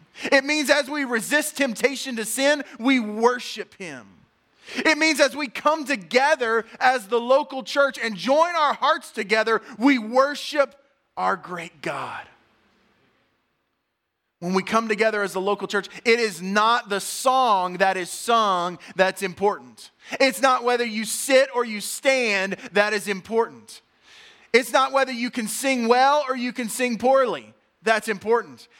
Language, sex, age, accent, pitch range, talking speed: English, male, 20-39, American, 190-260 Hz, 155 wpm